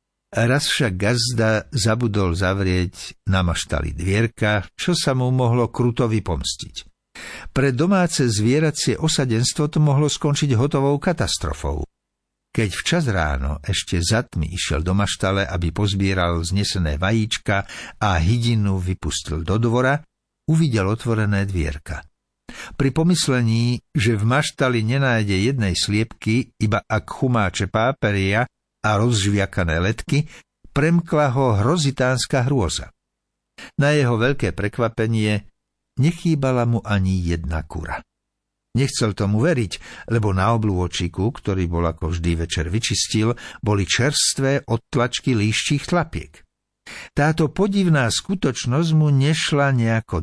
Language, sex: Slovak, male